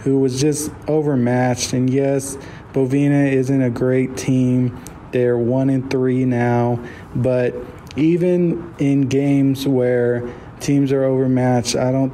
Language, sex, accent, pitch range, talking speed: English, male, American, 125-145 Hz, 120 wpm